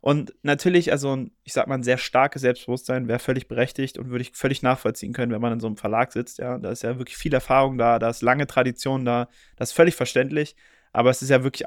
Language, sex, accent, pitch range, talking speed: German, male, German, 125-150 Hz, 245 wpm